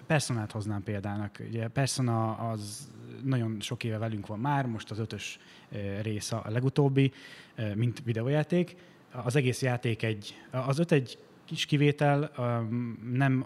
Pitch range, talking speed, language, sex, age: 110-135 Hz, 135 wpm, Hungarian, male, 20-39